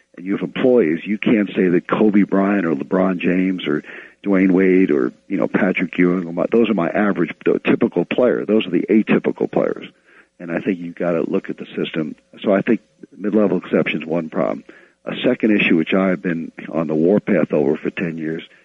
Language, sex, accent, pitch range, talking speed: English, male, American, 85-100 Hz, 205 wpm